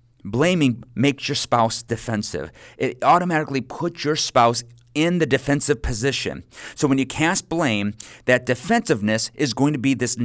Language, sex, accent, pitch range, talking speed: English, male, American, 115-145 Hz, 150 wpm